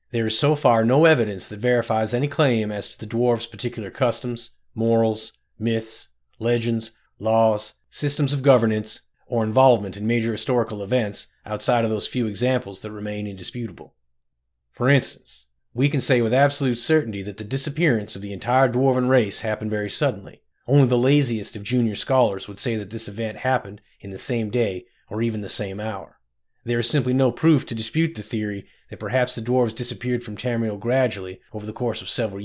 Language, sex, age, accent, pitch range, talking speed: English, male, 30-49, American, 105-125 Hz, 185 wpm